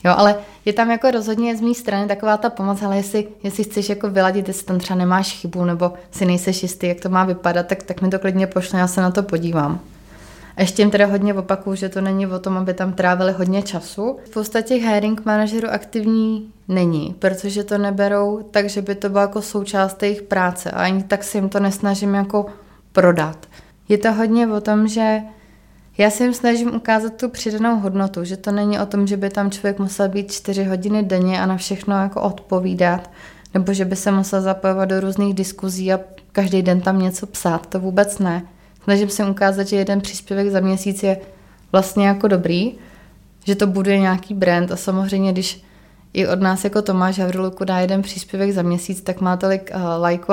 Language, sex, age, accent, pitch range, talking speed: Czech, female, 20-39, native, 185-205 Hz, 205 wpm